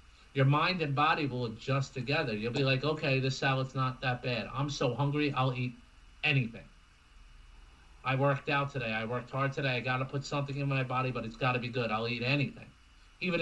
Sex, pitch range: male, 125-195 Hz